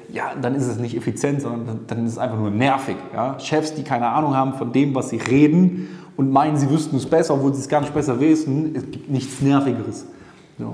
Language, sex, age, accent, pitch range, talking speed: German, male, 20-39, German, 135-170 Hz, 235 wpm